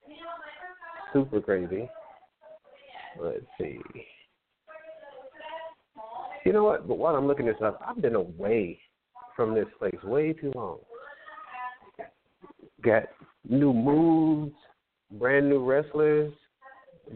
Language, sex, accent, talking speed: English, male, American, 100 wpm